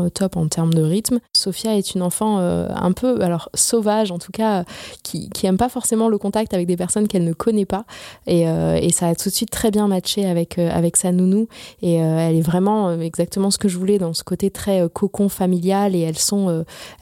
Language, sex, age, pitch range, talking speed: French, female, 20-39, 180-210 Hz, 245 wpm